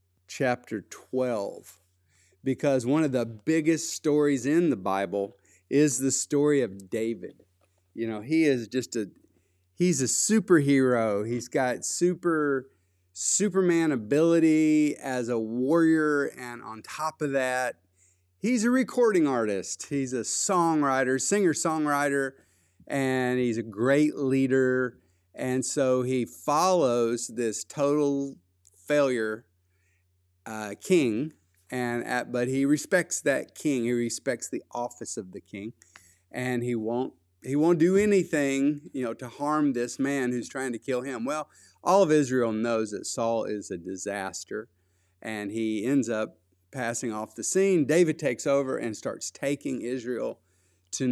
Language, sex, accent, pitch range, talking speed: English, male, American, 105-145 Hz, 140 wpm